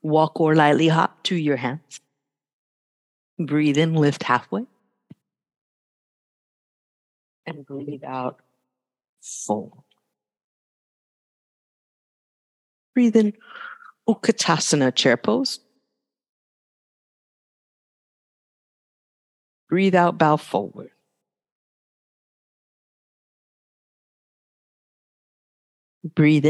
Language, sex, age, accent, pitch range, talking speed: English, female, 50-69, American, 130-180 Hz, 55 wpm